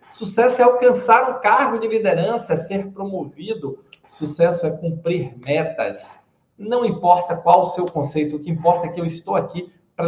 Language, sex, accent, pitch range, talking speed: Portuguese, male, Brazilian, 160-215 Hz, 175 wpm